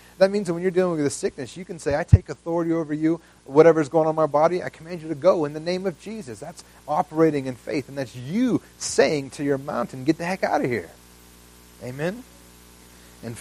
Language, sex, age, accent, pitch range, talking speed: English, male, 30-49, American, 120-165 Hz, 235 wpm